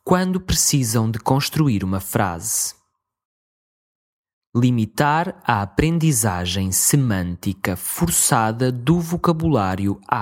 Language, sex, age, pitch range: English, male, 20-39, 105-150 Hz